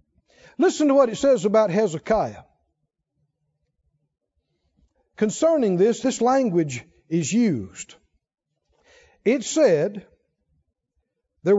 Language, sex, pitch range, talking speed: English, male, 175-265 Hz, 85 wpm